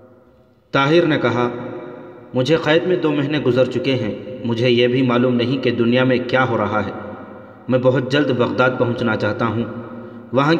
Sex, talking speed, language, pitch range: male, 175 wpm, Urdu, 120-130 Hz